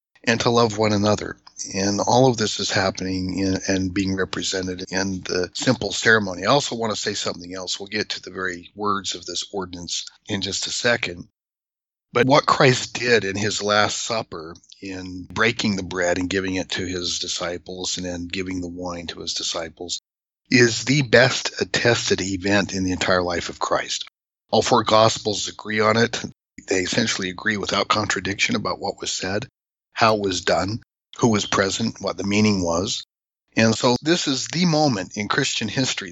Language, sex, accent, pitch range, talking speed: English, male, American, 95-110 Hz, 185 wpm